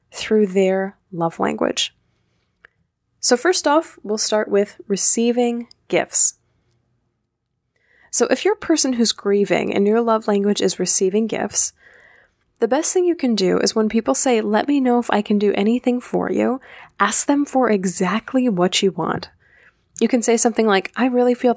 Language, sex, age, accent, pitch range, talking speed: English, female, 10-29, American, 195-240 Hz, 170 wpm